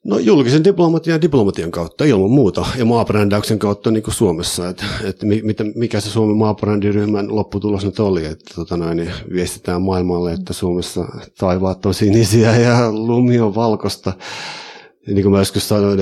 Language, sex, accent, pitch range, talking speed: Finnish, male, native, 85-105 Hz, 145 wpm